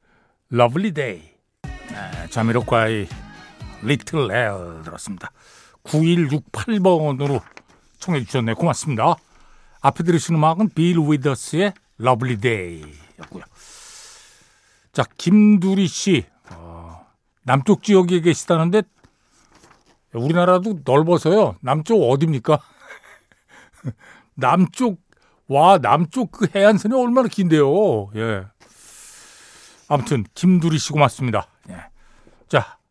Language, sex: Korean, male